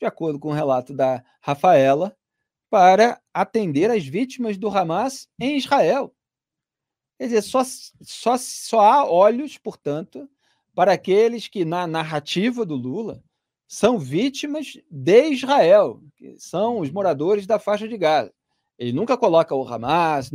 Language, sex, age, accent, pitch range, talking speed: Portuguese, male, 40-59, Brazilian, 140-190 Hz, 135 wpm